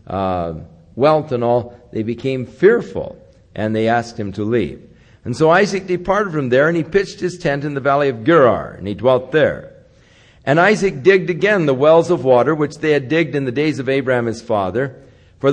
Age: 50-69